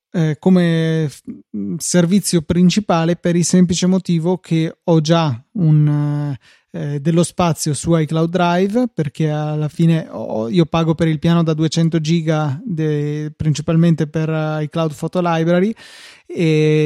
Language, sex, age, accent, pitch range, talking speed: Italian, male, 20-39, native, 155-170 Hz, 115 wpm